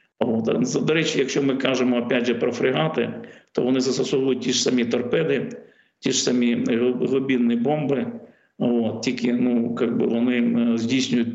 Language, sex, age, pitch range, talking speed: Ukrainian, male, 50-69, 120-130 Hz, 135 wpm